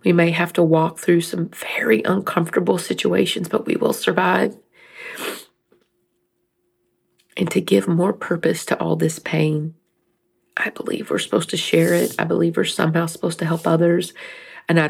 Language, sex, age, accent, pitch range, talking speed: English, female, 40-59, American, 165-195 Hz, 160 wpm